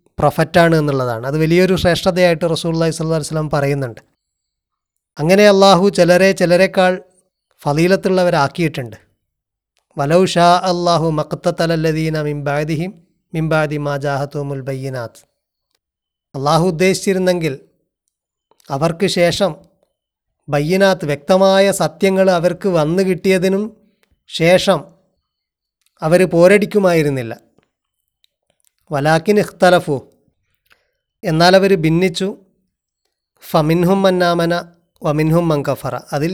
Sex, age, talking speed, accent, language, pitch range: male, 30-49, 75 wpm, native, Malayalam, 145-185 Hz